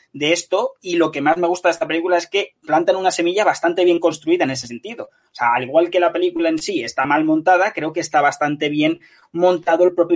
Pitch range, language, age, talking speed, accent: 135-175 Hz, Spanish, 20-39, 250 wpm, Spanish